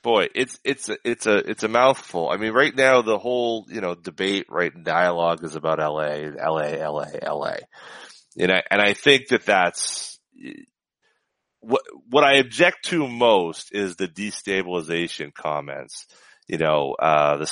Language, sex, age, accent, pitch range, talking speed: English, male, 30-49, American, 85-135 Hz, 160 wpm